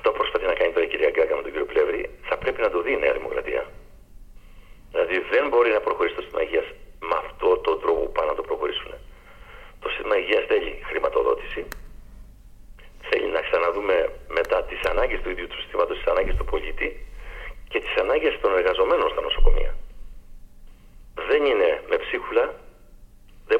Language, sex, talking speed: Greek, male, 175 wpm